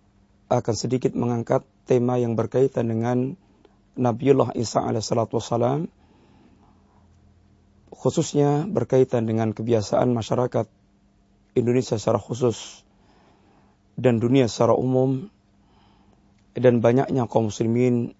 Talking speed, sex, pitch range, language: 90 wpm, male, 115-130 Hz, Malay